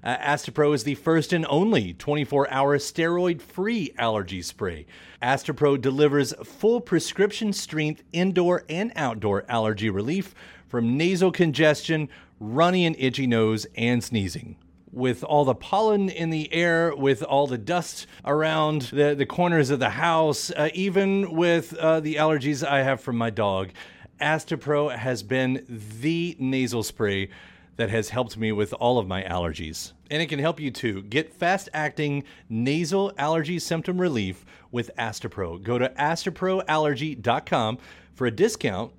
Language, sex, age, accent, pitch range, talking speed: English, male, 40-59, American, 115-165 Hz, 145 wpm